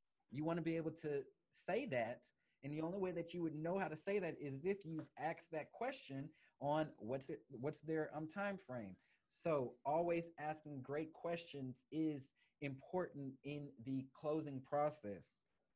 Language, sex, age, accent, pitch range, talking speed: English, male, 30-49, American, 130-155 Hz, 170 wpm